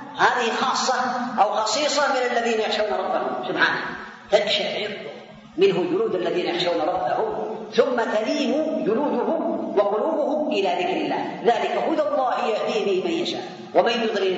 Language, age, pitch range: Arabic, 40-59, 175-295 Hz